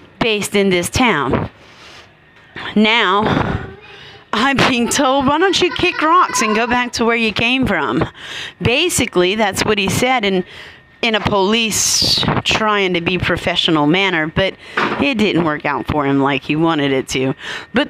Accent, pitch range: American, 185-280 Hz